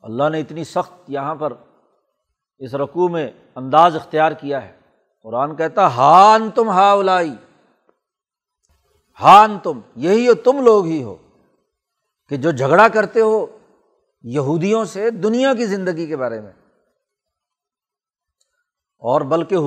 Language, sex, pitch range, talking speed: Urdu, male, 160-220 Hz, 125 wpm